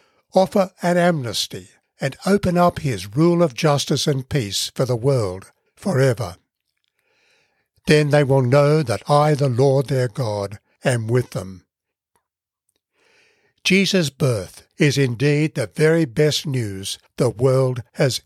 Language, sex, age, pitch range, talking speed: English, male, 60-79, 125-165 Hz, 130 wpm